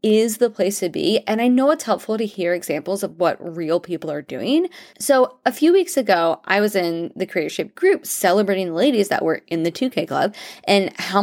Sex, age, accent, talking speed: female, 20-39, American, 220 wpm